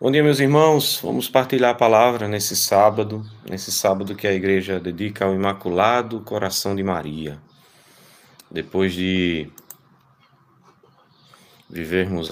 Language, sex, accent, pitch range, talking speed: Portuguese, male, Brazilian, 90-100 Hz, 115 wpm